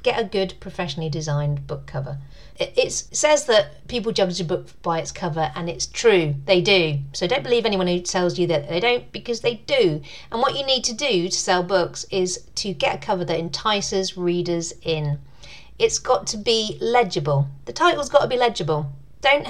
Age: 40-59